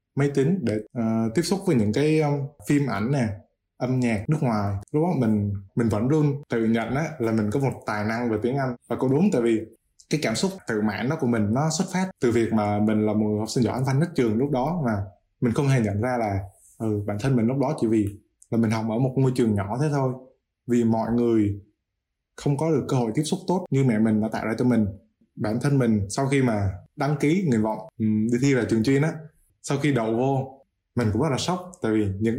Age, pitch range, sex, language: 20-39, 110-140 Hz, male, Vietnamese